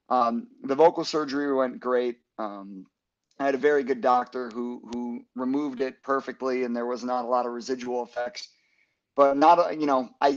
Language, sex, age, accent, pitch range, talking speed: English, male, 30-49, American, 120-135 Hz, 190 wpm